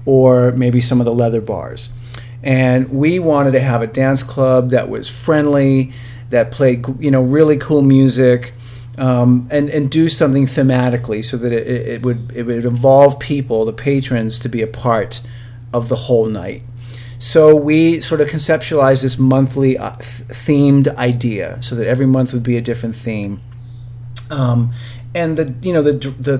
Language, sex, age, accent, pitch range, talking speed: English, male, 40-59, American, 120-135 Hz, 170 wpm